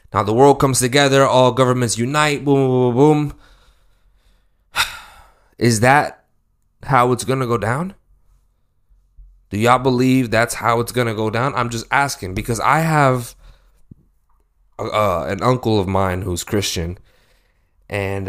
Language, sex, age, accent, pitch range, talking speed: English, male, 20-39, American, 95-120 Hz, 145 wpm